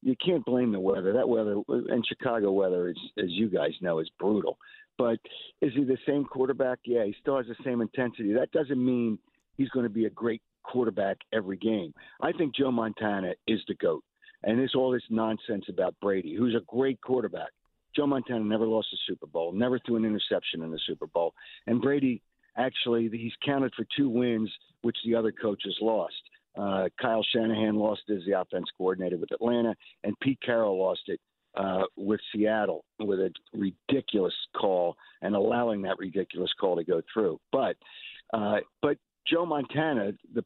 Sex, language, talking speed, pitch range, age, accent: male, English, 185 wpm, 105-135 Hz, 50-69, American